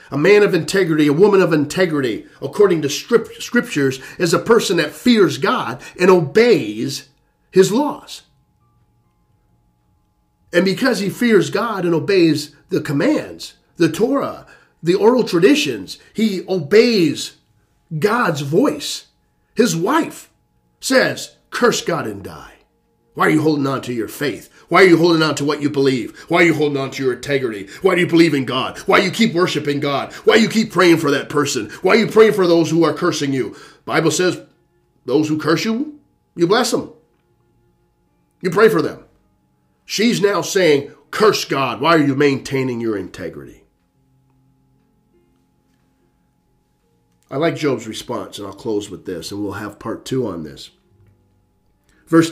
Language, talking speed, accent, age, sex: English, 165 wpm, American, 40-59, male